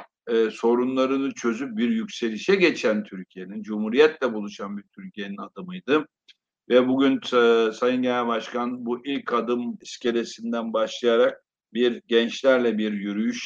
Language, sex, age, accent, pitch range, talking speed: Turkish, male, 60-79, native, 110-135 Hz, 120 wpm